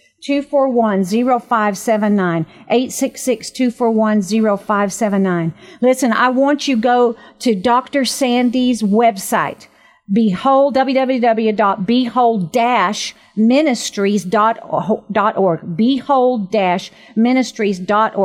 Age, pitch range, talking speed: 50-69, 205-245 Hz, 100 wpm